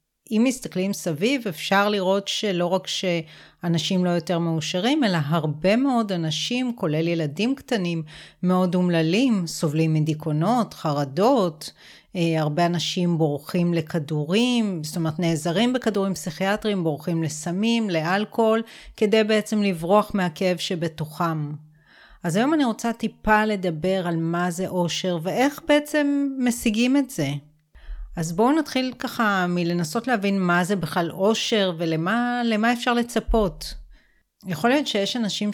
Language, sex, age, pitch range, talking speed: Hebrew, female, 30-49, 170-215 Hz, 120 wpm